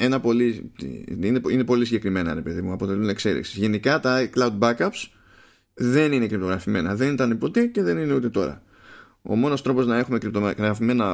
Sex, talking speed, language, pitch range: male, 140 wpm, Greek, 100-130 Hz